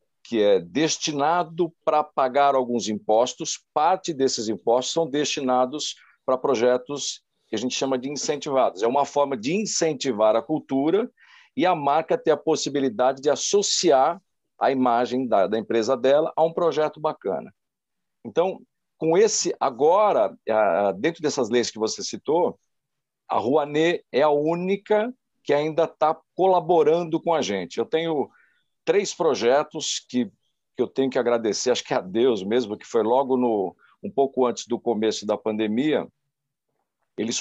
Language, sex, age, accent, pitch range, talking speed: Portuguese, male, 50-69, Brazilian, 120-160 Hz, 150 wpm